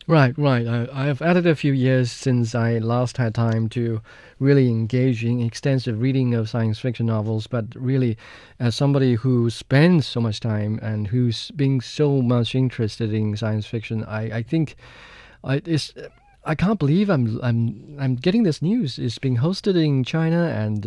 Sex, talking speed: male, 180 wpm